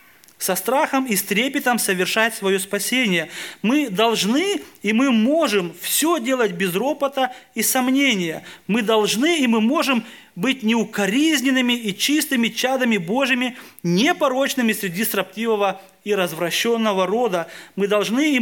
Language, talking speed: Russian, 125 wpm